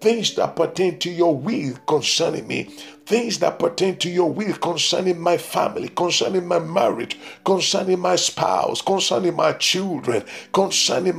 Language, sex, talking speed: English, male, 145 wpm